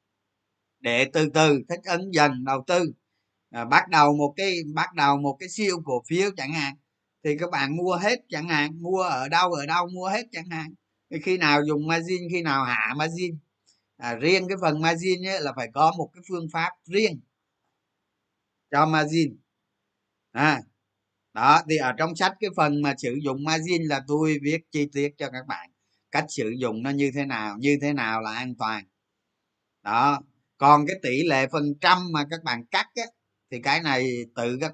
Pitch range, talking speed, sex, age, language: 130-175 Hz, 185 wpm, male, 20-39, Vietnamese